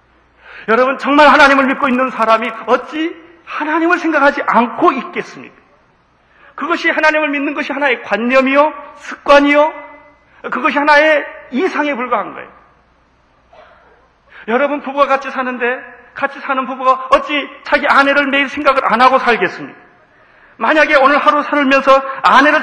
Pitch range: 260-310 Hz